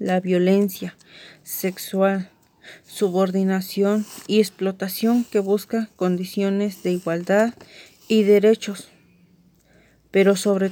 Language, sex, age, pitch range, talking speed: Spanish, female, 30-49, 185-220 Hz, 85 wpm